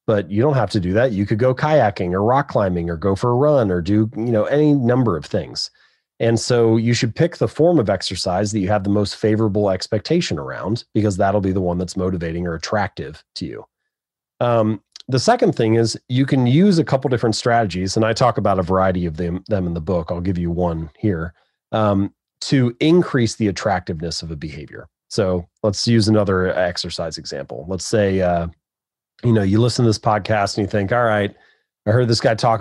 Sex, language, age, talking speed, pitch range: male, English, 30-49, 215 wpm, 95-120 Hz